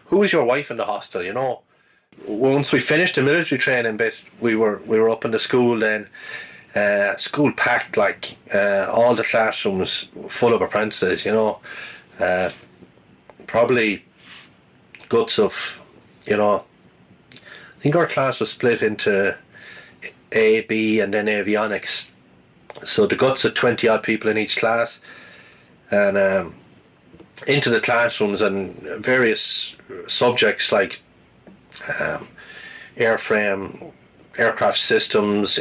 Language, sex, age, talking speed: English, male, 30-49, 135 wpm